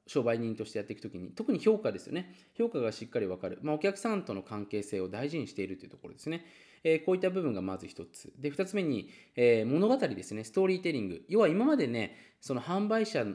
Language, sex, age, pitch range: Japanese, male, 20-39, 105-170 Hz